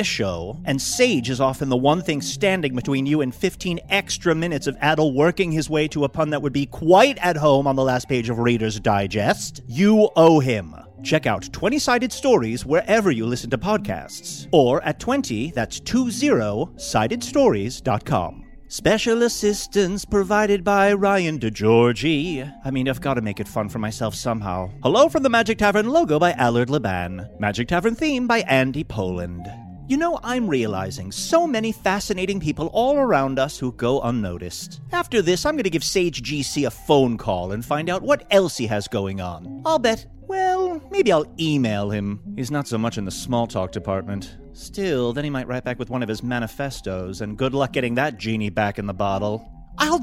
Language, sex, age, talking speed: English, male, 30-49, 190 wpm